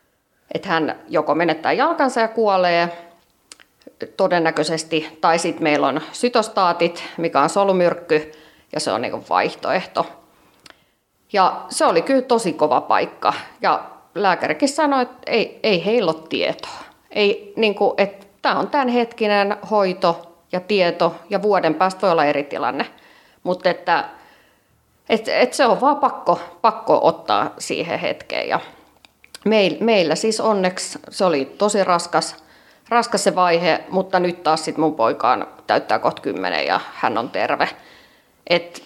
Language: Finnish